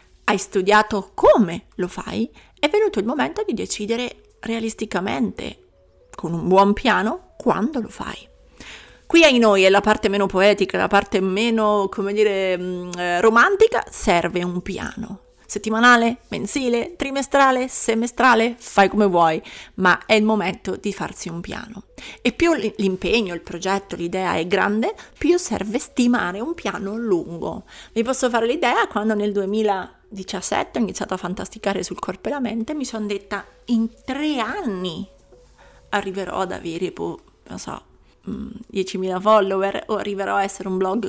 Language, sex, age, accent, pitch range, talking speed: Italian, female, 30-49, native, 190-230 Hz, 145 wpm